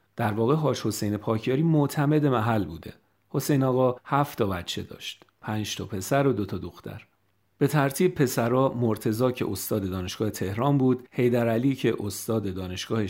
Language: Persian